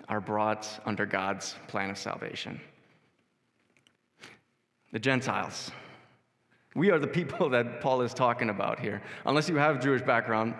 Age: 20-39